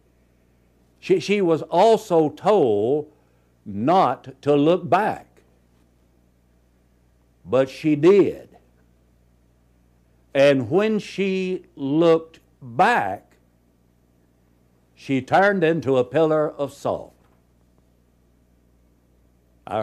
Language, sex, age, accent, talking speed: English, male, 60-79, American, 75 wpm